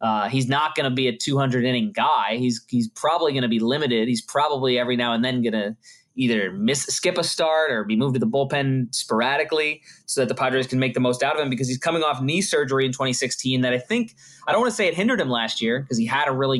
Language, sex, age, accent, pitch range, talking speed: English, male, 20-39, American, 120-150 Hz, 270 wpm